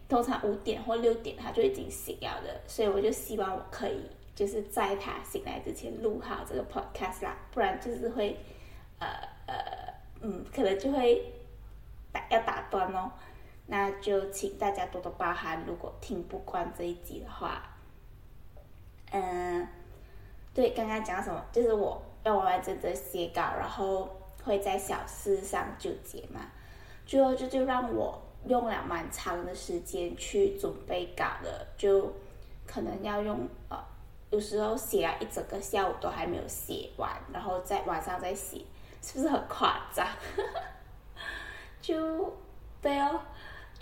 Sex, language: female, Chinese